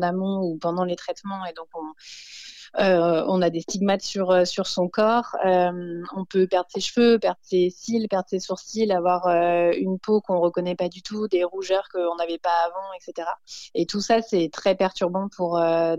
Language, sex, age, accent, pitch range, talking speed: French, female, 20-39, French, 170-195 Hz, 200 wpm